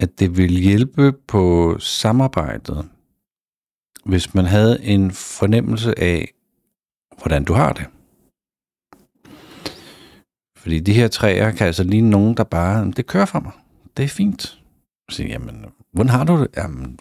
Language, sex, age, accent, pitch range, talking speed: Danish, male, 50-69, native, 90-120 Hz, 145 wpm